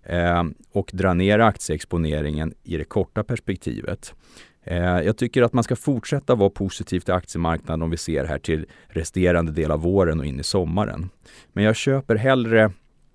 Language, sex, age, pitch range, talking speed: Swedish, male, 30-49, 80-105 Hz, 160 wpm